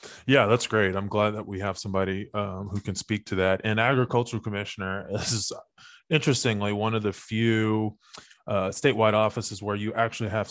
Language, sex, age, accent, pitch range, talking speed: English, male, 20-39, American, 95-110 Hz, 175 wpm